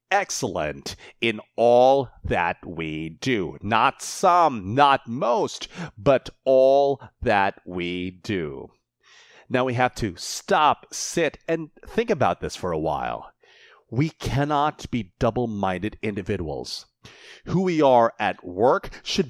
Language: English